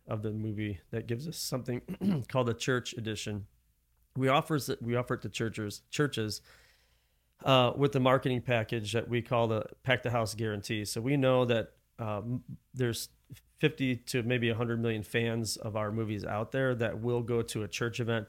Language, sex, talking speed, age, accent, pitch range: English, male, 185 wpm, 30-49, American, 110-130 Hz